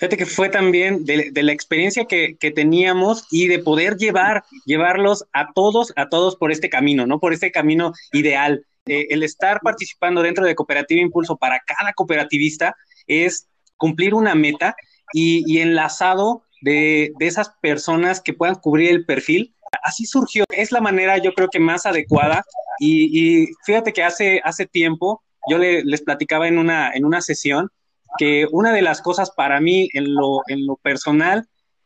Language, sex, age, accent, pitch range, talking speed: Spanish, male, 20-39, Mexican, 155-195 Hz, 175 wpm